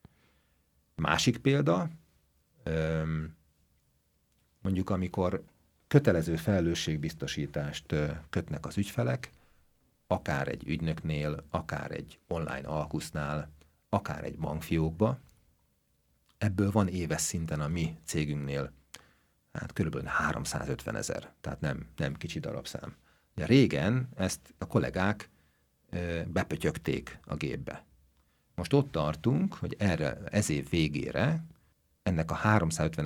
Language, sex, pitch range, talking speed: Hungarian, male, 75-95 Hz, 95 wpm